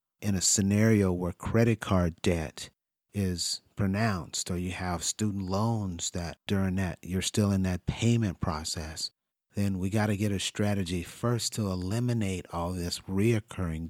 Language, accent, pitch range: English, American, 85-100 Hz